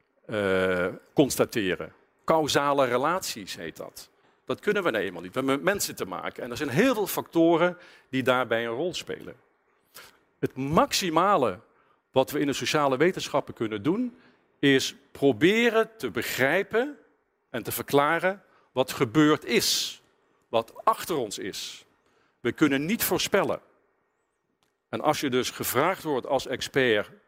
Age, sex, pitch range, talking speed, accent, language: 50-69, male, 120-175 Hz, 145 wpm, Dutch, Dutch